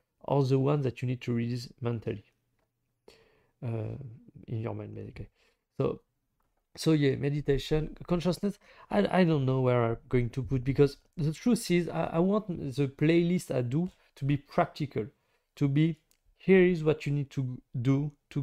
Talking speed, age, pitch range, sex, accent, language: 175 wpm, 40-59, 125-160 Hz, male, French, English